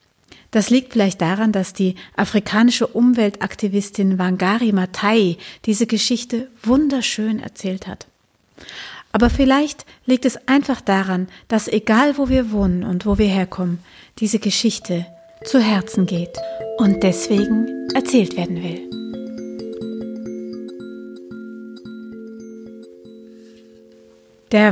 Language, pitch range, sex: German, 180-235 Hz, female